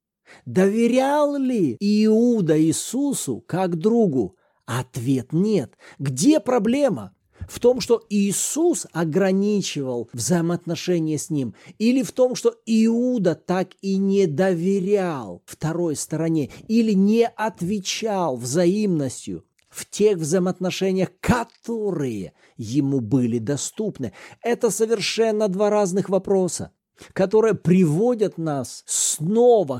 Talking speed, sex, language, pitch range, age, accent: 100 wpm, male, Russian, 160-220 Hz, 40-59, native